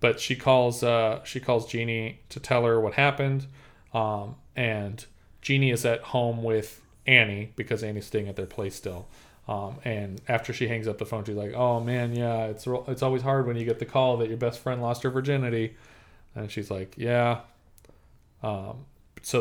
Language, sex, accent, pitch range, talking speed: English, male, American, 105-120 Hz, 195 wpm